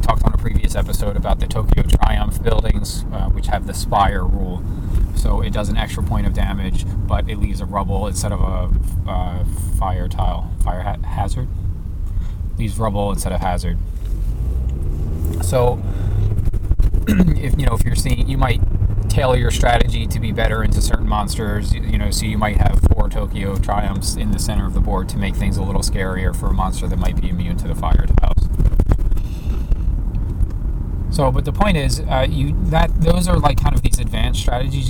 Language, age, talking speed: English, 30-49, 180 wpm